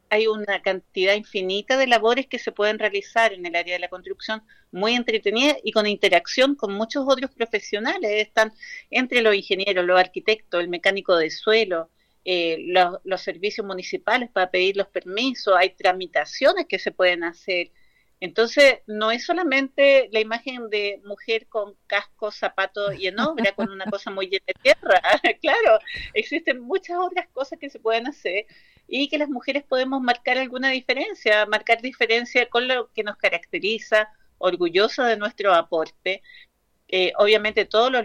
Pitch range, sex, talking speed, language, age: 185-245 Hz, female, 160 wpm, Spanish, 40-59